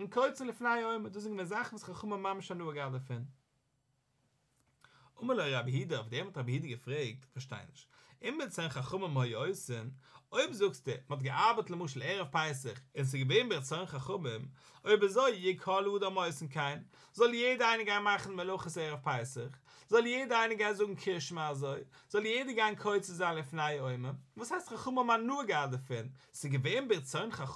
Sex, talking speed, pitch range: male, 125 wpm, 135-200 Hz